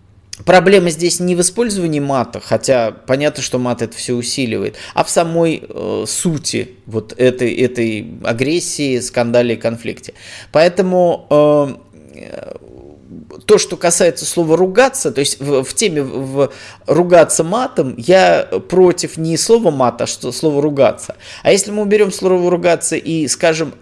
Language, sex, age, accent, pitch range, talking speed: Russian, male, 20-39, native, 120-175 Hz, 145 wpm